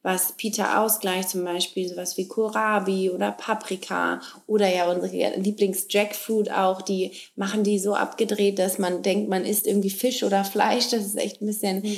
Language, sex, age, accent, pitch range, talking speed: English, female, 20-39, German, 185-220 Hz, 170 wpm